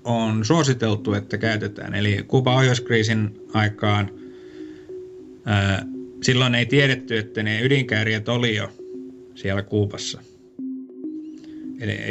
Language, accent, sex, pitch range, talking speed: Finnish, native, male, 105-130 Hz, 100 wpm